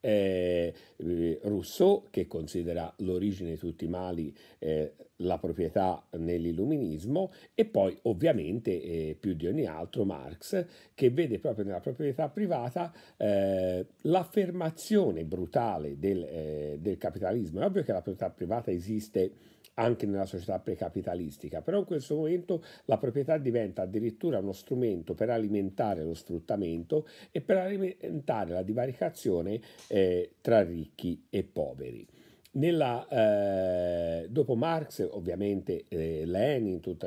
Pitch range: 90-135 Hz